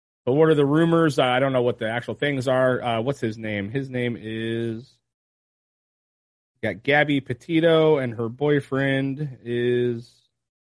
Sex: male